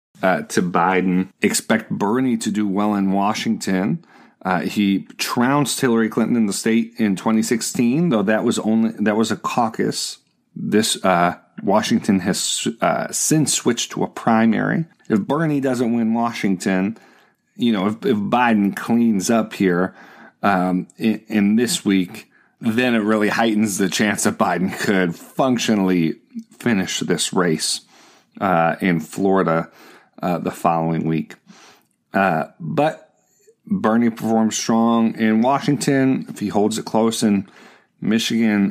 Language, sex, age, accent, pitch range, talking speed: English, male, 40-59, American, 100-145 Hz, 140 wpm